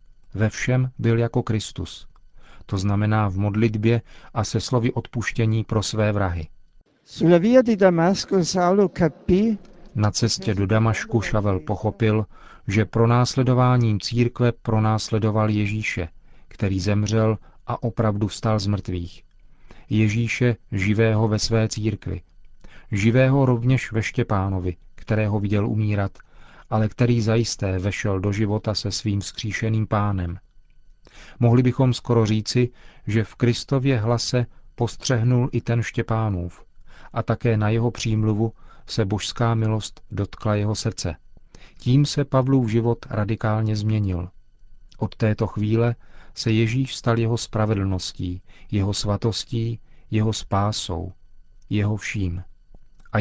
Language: Czech